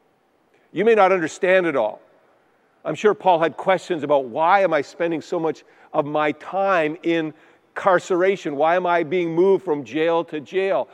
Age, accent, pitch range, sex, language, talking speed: 50-69, American, 145-180 Hz, male, English, 175 wpm